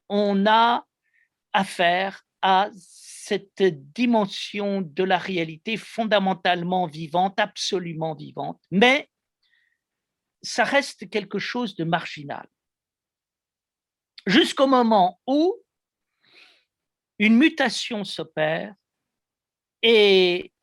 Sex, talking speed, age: male, 80 wpm, 50-69